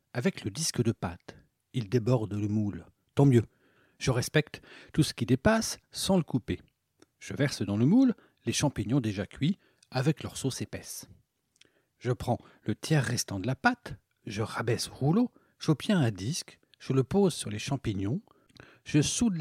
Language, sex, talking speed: French, male, 175 wpm